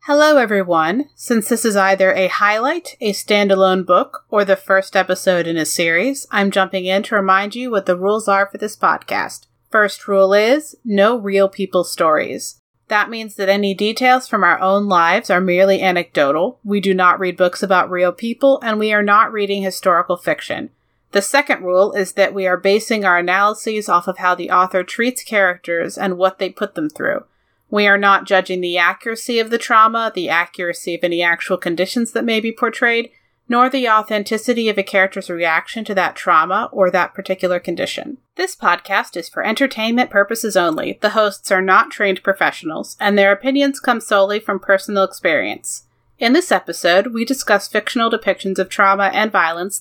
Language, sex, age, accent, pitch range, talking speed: English, female, 30-49, American, 185-225 Hz, 185 wpm